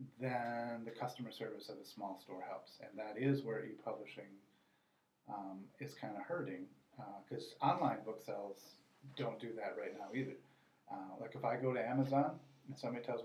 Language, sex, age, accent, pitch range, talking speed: English, male, 30-49, American, 105-135 Hz, 180 wpm